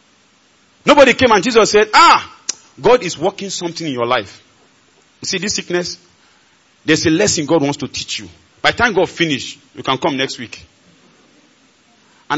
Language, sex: English, male